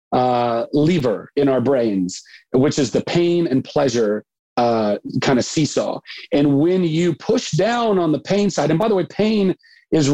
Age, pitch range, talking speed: 40-59, 130-170 Hz, 180 wpm